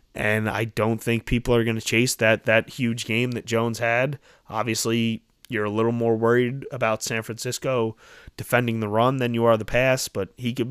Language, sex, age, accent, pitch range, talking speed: English, male, 20-39, American, 105-120 Hz, 200 wpm